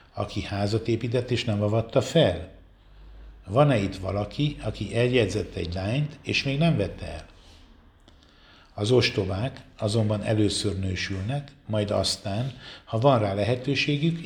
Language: Hungarian